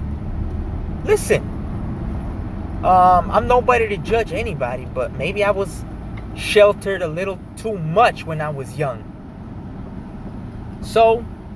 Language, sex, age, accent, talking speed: English, male, 20-39, American, 110 wpm